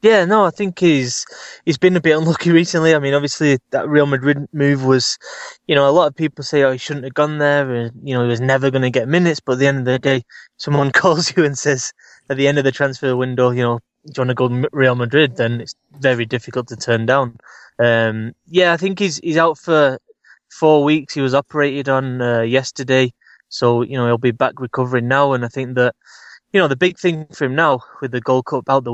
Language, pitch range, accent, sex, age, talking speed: English, 125-145 Hz, British, male, 20-39, 250 wpm